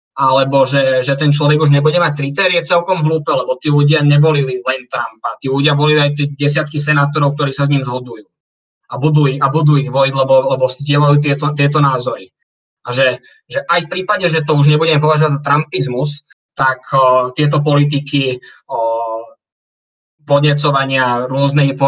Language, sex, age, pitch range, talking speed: Slovak, male, 20-39, 130-150 Hz, 165 wpm